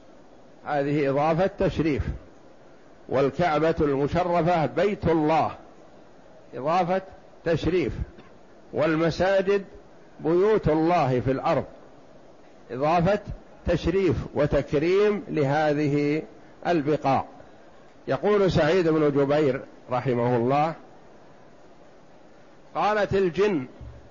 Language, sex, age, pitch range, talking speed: Arabic, male, 60-79, 140-185 Hz, 65 wpm